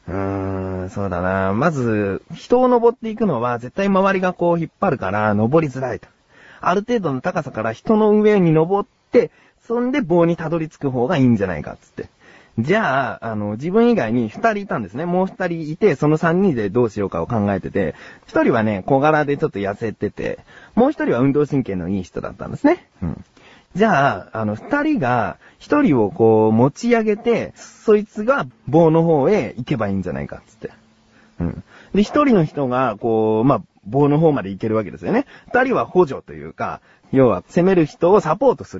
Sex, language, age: male, Japanese, 30-49